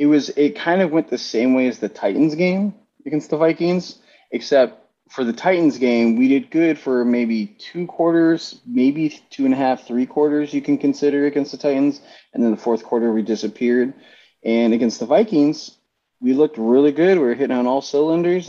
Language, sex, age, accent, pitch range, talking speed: English, male, 30-49, American, 110-150 Hz, 200 wpm